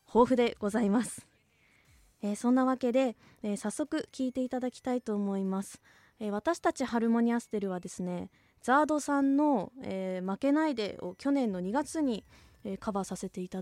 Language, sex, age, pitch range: Japanese, female, 20-39, 185-245 Hz